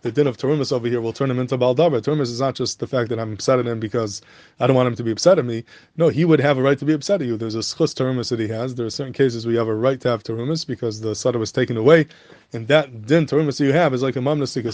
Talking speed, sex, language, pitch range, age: 315 wpm, male, English, 120-145 Hz, 20-39